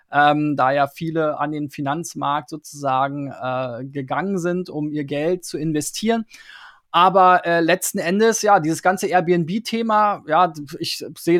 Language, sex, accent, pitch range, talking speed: German, male, German, 160-195 Hz, 145 wpm